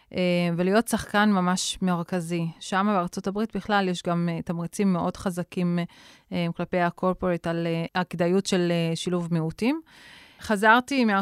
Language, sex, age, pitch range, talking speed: Hebrew, female, 30-49, 170-190 Hz, 105 wpm